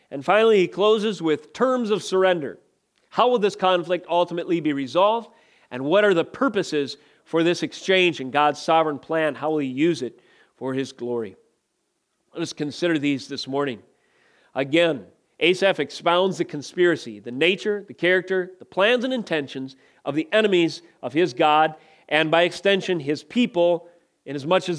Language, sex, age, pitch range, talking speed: English, male, 40-59, 155-205 Hz, 160 wpm